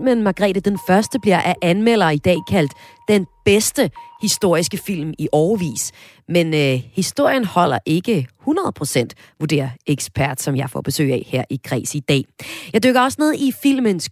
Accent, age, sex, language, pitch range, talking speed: native, 30-49, female, Danish, 150-230 Hz, 170 wpm